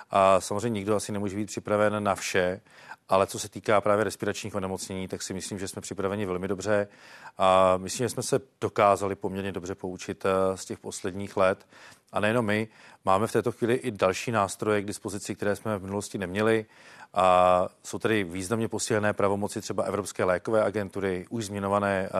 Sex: male